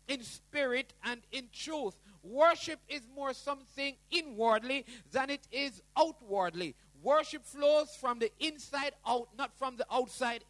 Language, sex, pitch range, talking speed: English, male, 240-290 Hz, 135 wpm